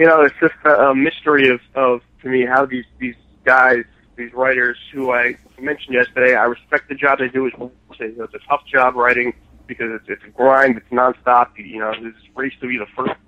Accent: American